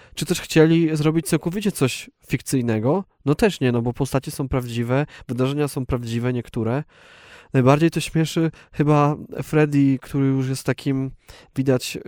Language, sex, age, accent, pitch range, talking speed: Polish, male, 20-39, native, 125-155 Hz, 145 wpm